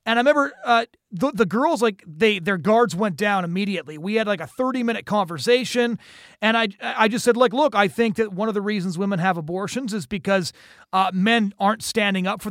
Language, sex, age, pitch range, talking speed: English, male, 30-49, 200-245 Hz, 215 wpm